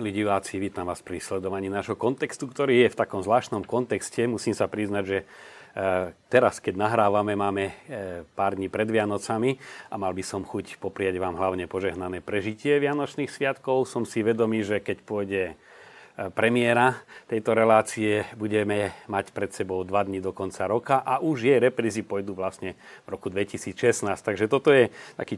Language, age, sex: Slovak, 40-59, male